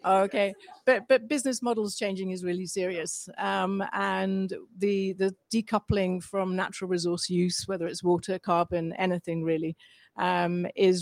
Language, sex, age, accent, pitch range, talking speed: English, female, 40-59, British, 180-200 Hz, 140 wpm